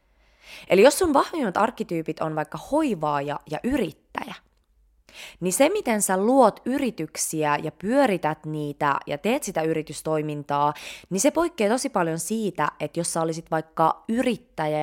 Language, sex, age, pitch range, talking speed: Finnish, female, 20-39, 155-220 Hz, 140 wpm